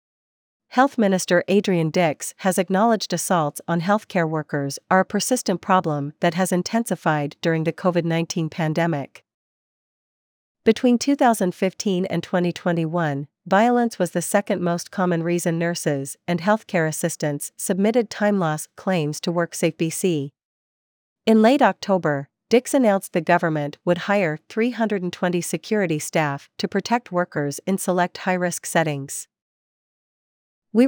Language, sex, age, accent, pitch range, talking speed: English, female, 40-59, American, 160-200 Hz, 120 wpm